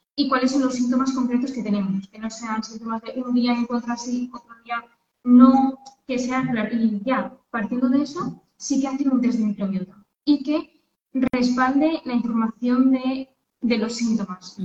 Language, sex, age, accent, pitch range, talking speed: Spanish, female, 20-39, Spanish, 225-260 Hz, 185 wpm